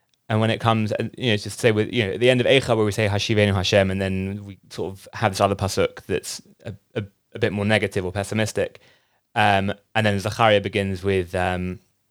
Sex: male